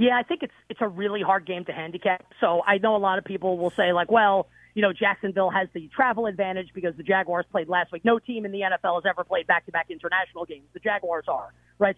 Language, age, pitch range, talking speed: English, 30-49, 180-225 Hz, 250 wpm